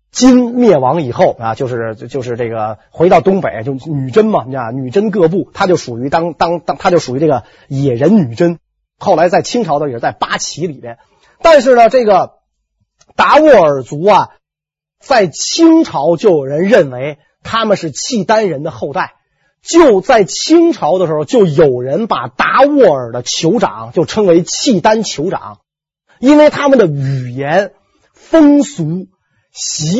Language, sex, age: Chinese, male, 30-49